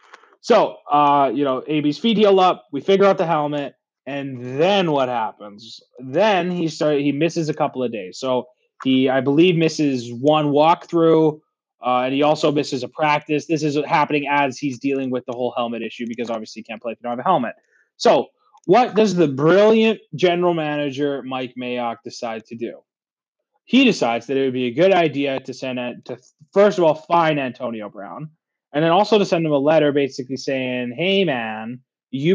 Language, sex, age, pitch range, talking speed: English, male, 20-39, 125-170 Hz, 195 wpm